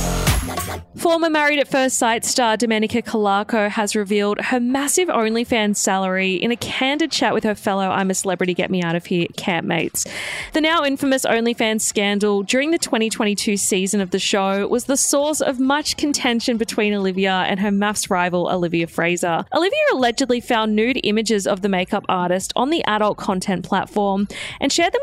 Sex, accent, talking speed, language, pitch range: female, Australian, 160 wpm, English, 200-275 Hz